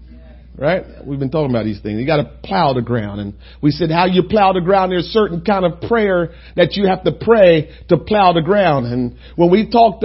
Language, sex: English, male